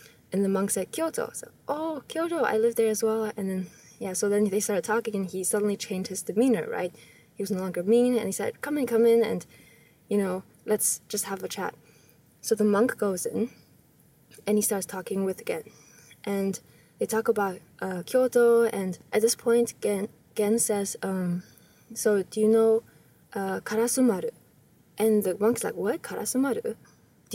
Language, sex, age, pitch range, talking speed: English, female, 10-29, 190-235 Hz, 190 wpm